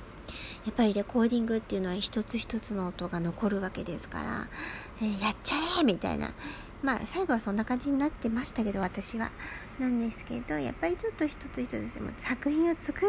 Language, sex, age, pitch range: Japanese, male, 50-69, 195-270 Hz